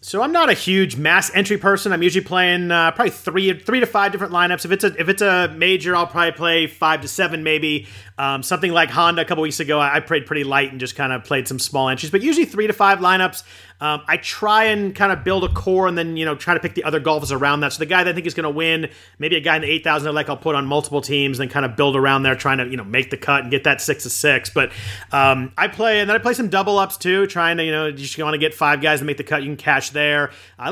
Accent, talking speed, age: American, 295 wpm, 30-49